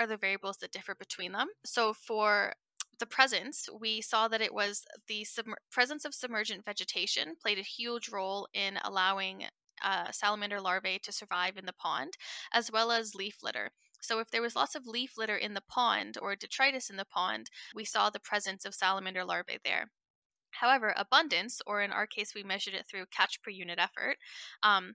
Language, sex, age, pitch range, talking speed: English, female, 10-29, 190-225 Hz, 190 wpm